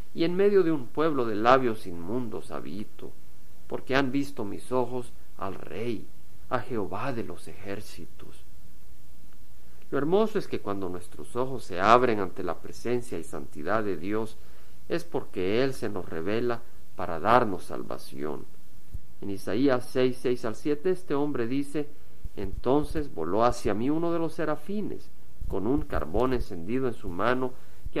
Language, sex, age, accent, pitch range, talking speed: Spanish, male, 50-69, Mexican, 90-135 Hz, 155 wpm